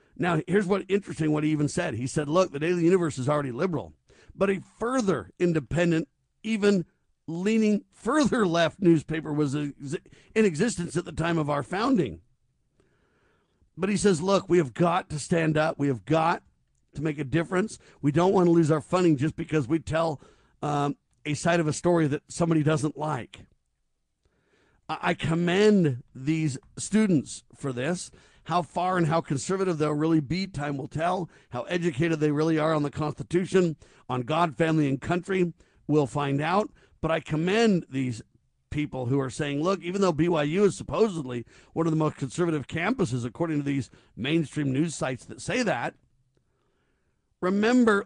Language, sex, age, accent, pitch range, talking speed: English, male, 50-69, American, 145-180 Hz, 170 wpm